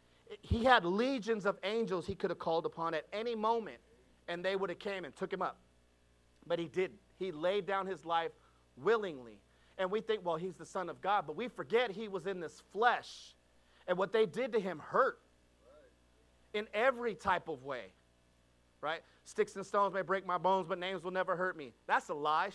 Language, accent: English, American